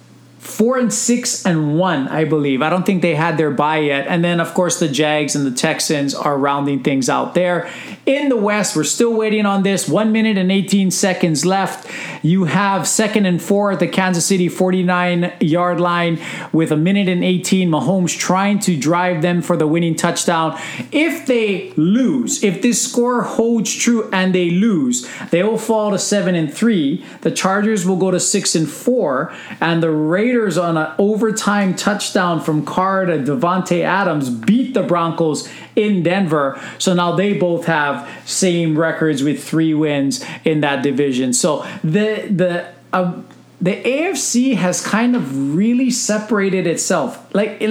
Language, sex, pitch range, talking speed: English, male, 165-210 Hz, 175 wpm